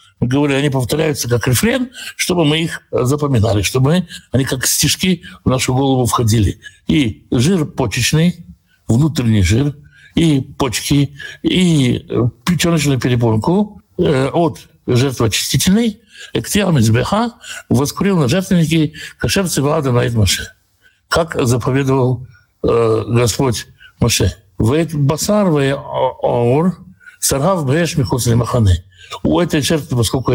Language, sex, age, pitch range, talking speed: Russian, male, 60-79, 120-175 Hz, 95 wpm